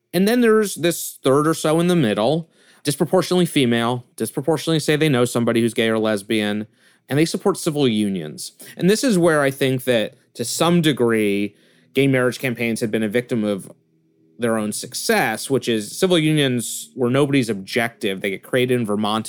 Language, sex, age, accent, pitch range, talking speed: English, male, 30-49, American, 105-135 Hz, 185 wpm